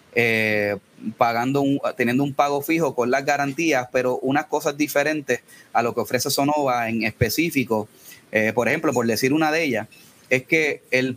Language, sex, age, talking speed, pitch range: Spanish, male, 30-49, 170 wpm, 120-150 Hz